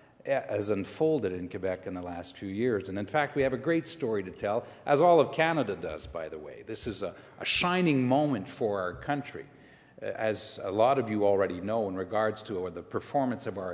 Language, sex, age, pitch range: English, male, 50-69, 105-140 Hz